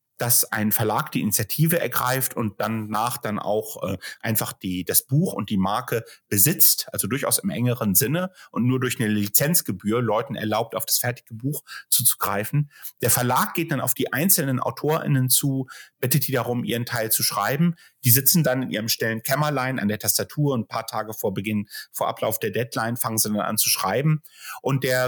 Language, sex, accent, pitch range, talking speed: German, male, German, 110-140 Hz, 190 wpm